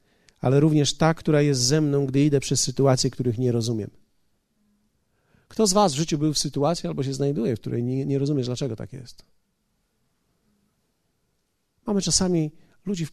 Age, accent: 40-59, native